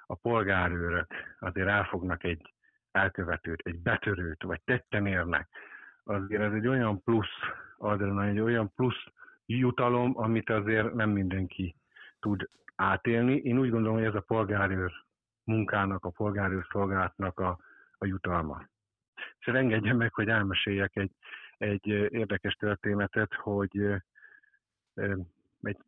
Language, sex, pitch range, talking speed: Hungarian, male, 95-110 Hz, 120 wpm